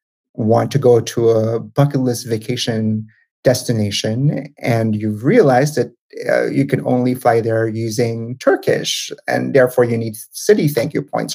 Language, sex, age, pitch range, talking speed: English, male, 30-49, 110-140 Hz, 155 wpm